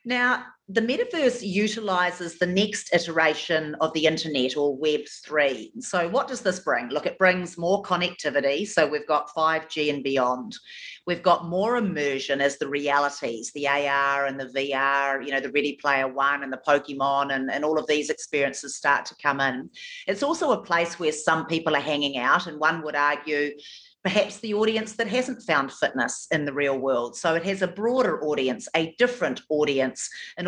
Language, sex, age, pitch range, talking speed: English, female, 40-59, 145-200 Hz, 185 wpm